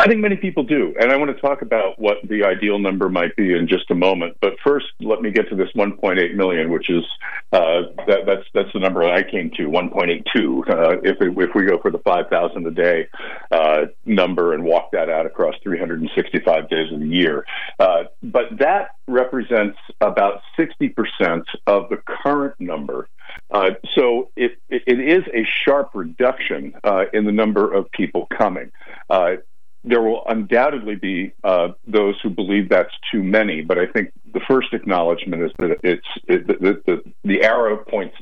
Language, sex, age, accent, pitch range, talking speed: English, male, 50-69, American, 105-155 Hz, 185 wpm